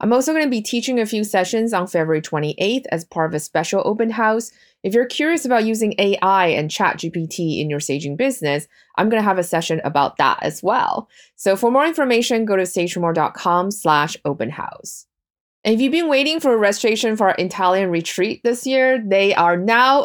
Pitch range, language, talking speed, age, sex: 175-240 Hz, English, 205 wpm, 20-39, female